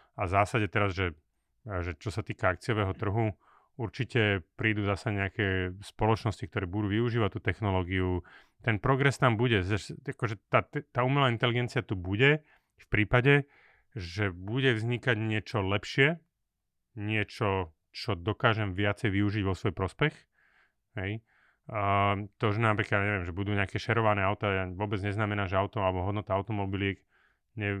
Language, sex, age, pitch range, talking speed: Slovak, male, 30-49, 95-110 Hz, 145 wpm